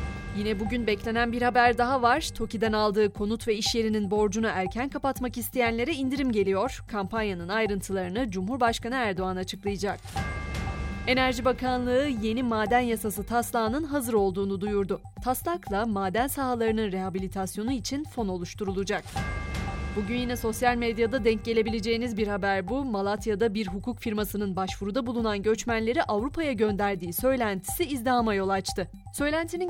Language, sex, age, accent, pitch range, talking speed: Turkish, female, 30-49, native, 200-250 Hz, 125 wpm